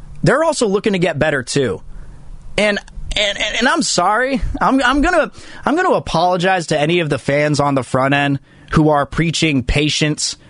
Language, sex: English, male